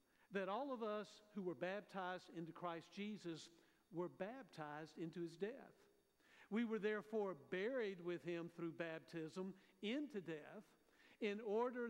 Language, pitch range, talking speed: English, 170-215 Hz, 135 wpm